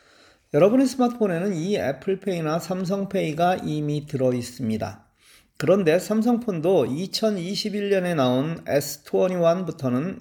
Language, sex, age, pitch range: Korean, male, 40-59, 130-205 Hz